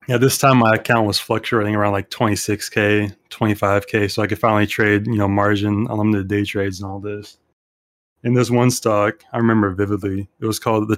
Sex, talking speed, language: male, 195 wpm, English